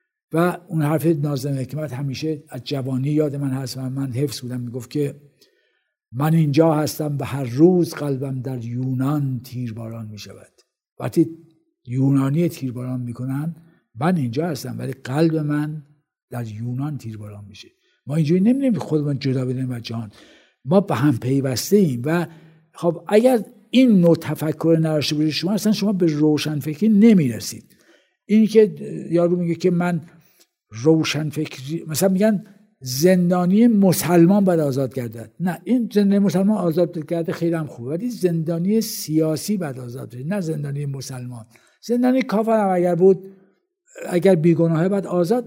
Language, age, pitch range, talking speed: Persian, 60-79, 135-190 Hz, 150 wpm